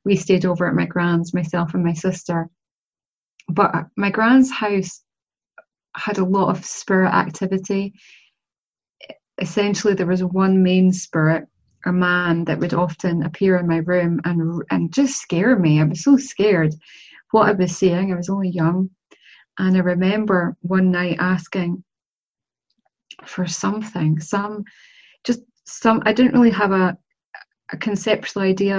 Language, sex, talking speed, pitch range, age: English, female, 145 wpm, 180-200 Hz, 30-49